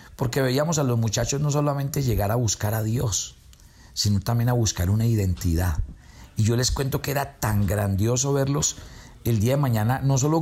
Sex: male